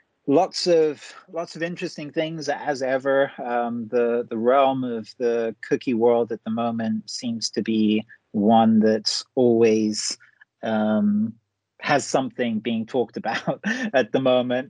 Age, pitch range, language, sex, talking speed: 30-49, 115-140 Hz, English, male, 140 wpm